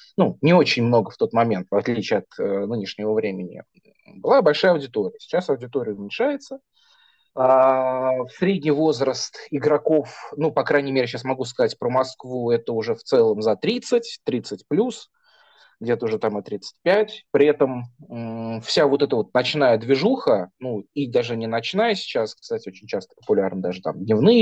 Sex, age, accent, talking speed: male, 20-39, native, 160 wpm